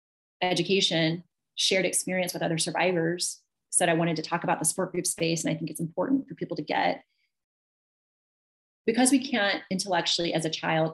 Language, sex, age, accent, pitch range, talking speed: English, female, 30-49, American, 165-195 Hz, 175 wpm